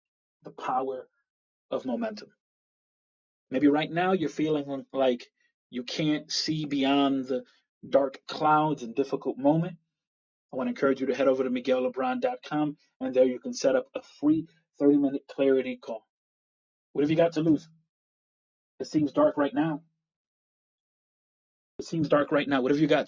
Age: 30-49